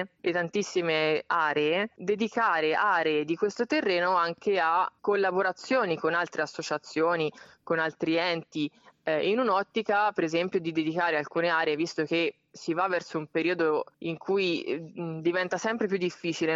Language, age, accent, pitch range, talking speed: English, 20-39, Italian, 160-180 Hz, 140 wpm